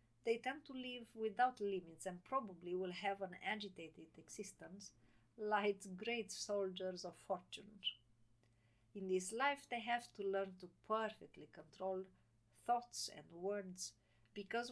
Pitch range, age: 160-215 Hz, 50-69